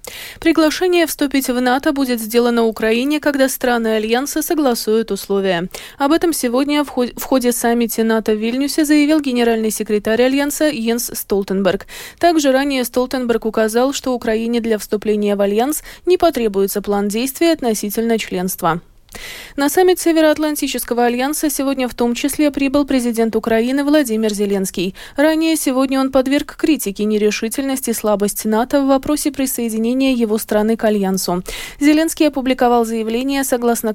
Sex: female